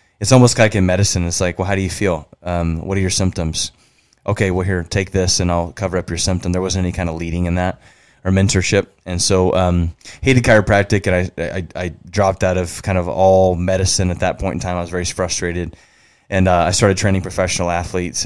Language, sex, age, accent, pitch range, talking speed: English, male, 20-39, American, 85-95 Hz, 235 wpm